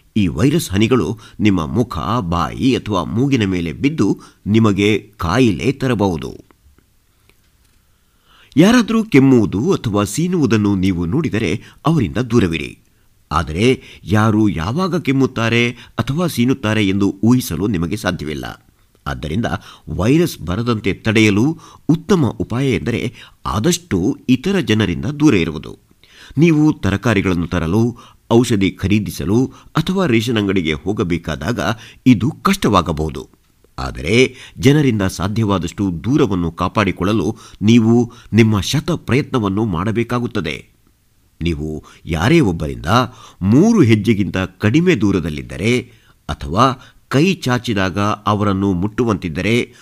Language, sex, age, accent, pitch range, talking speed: Kannada, male, 50-69, native, 95-125 Hz, 90 wpm